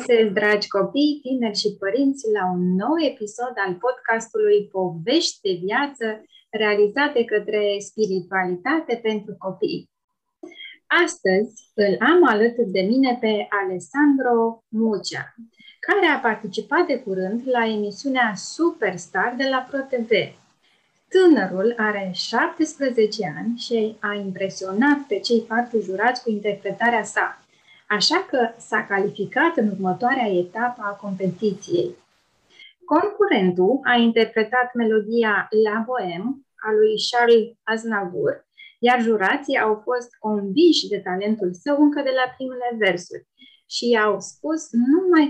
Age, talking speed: 20-39, 120 wpm